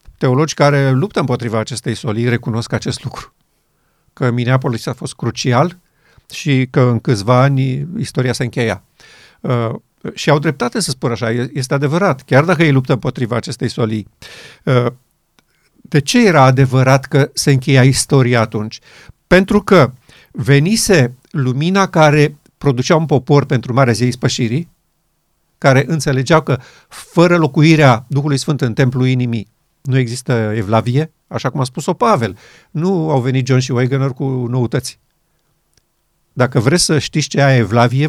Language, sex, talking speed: Romanian, male, 145 wpm